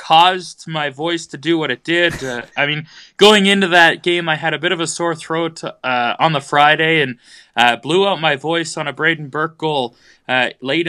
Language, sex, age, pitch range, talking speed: English, male, 20-39, 145-175 Hz, 215 wpm